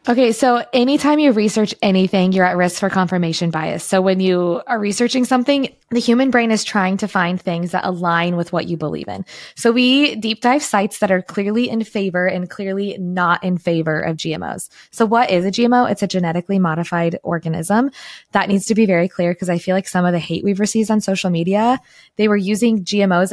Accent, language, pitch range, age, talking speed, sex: American, English, 175-210 Hz, 20-39, 215 wpm, female